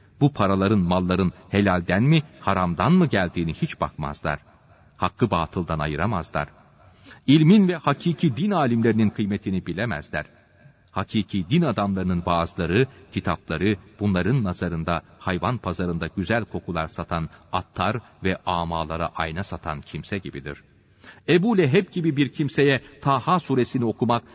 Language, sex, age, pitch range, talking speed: Turkish, male, 40-59, 85-125 Hz, 115 wpm